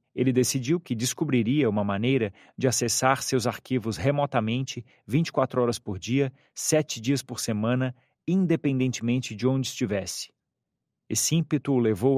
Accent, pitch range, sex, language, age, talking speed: Brazilian, 115-145 Hz, male, Portuguese, 40-59, 135 wpm